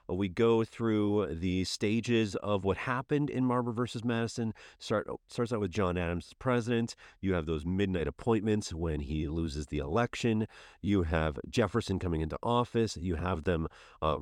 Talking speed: 165 wpm